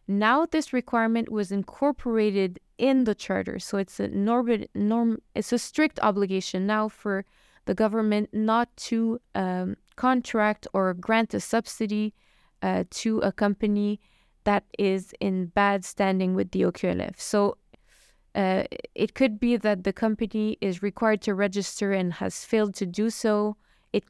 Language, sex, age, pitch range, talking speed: English, female, 20-39, 195-225 Hz, 150 wpm